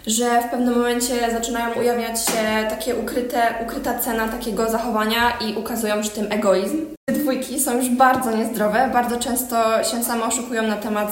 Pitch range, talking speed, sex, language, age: 220-250 Hz, 165 wpm, female, Polish, 20-39